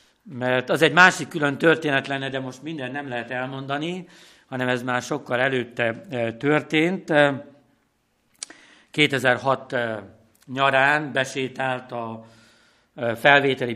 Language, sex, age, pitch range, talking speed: Hungarian, male, 60-79, 125-150 Hz, 105 wpm